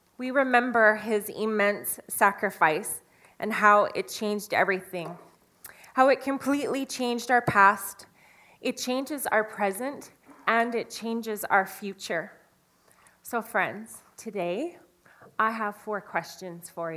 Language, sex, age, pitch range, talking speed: English, female, 20-39, 195-245 Hz, 115 wpm